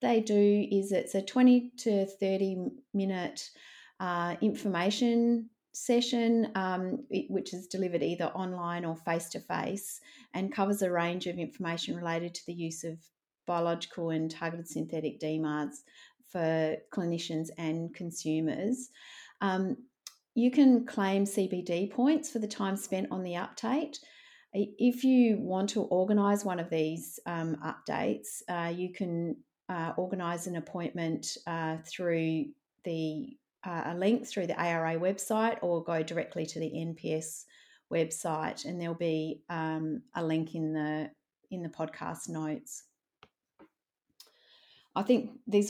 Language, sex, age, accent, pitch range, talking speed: English, female, 40-59, Australian, 160-205 Hz, 135 wpm